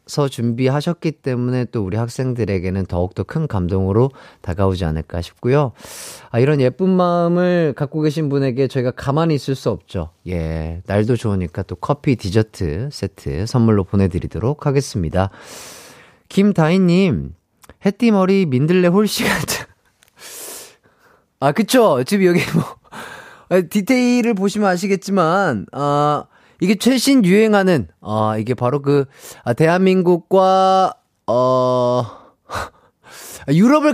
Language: Korean